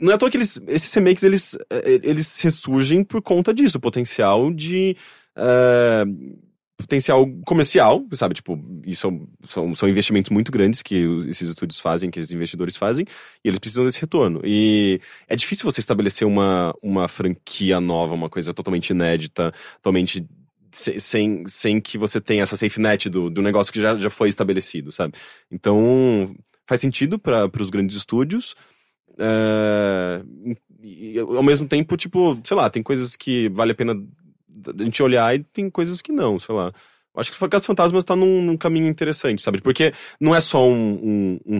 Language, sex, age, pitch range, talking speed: Portuguese, male, 20-39, 100-140 Hz, 175 wpm